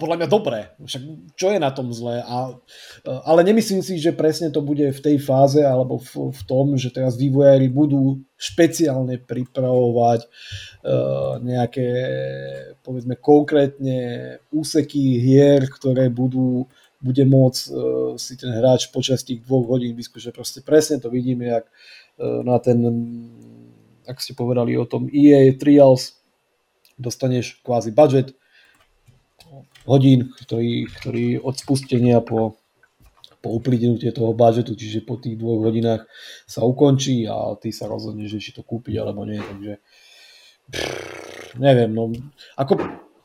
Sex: male